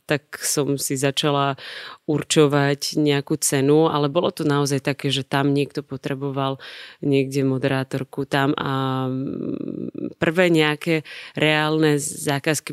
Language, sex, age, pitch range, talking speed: Slovak, female, 30-49, 135-155 Hz, 115 wpm